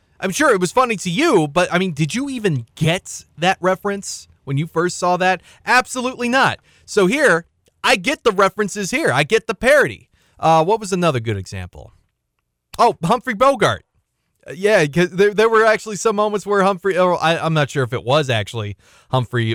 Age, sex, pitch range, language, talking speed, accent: 30-49, male, 125-185 Hz, English, 195 wpm, American